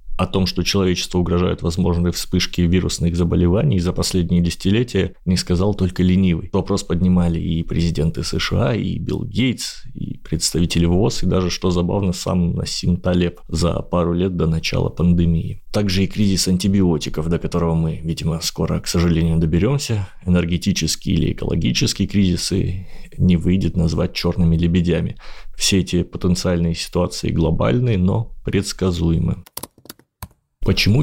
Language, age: Russian, 20-39